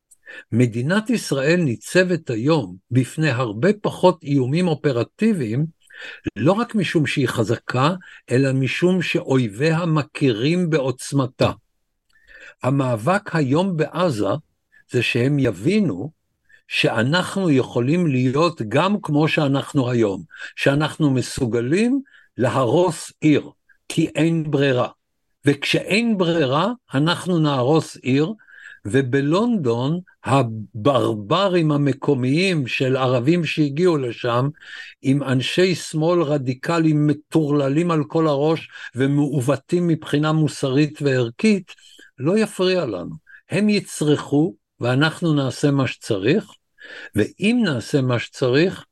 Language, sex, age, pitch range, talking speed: Hebrew, male, 60-79, 130-170 Hz, 95 wpm